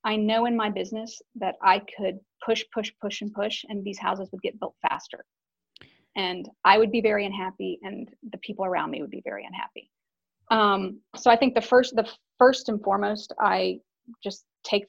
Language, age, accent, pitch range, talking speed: English, 30-49, American, 190-225 Hz, 195 wpm